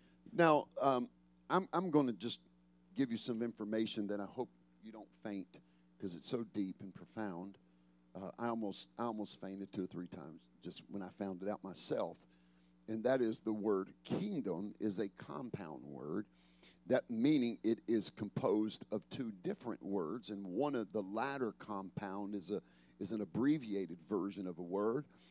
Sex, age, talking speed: male, 50-69, 175 wpm